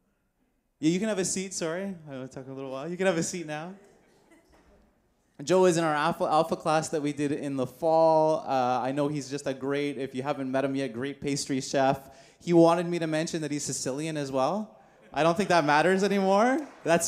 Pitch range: 110-150 Hz